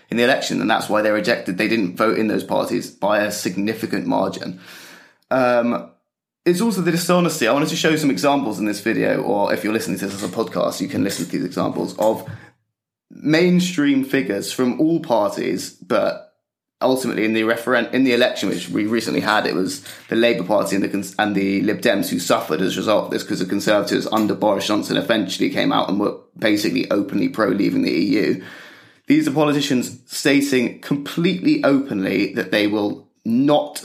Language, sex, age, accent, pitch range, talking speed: English, male, 20-39, British, 110-165 Hz, 200 wpm